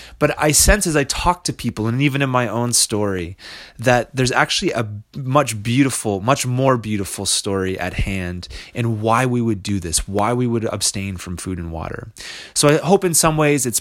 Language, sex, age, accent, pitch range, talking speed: English, male, 30-49, American, 105-145 Hz, 205 wpm